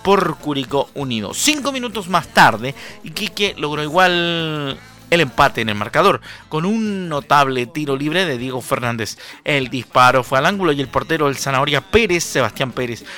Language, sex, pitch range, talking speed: Spanish, male, 135-190 Hz, 170 wpm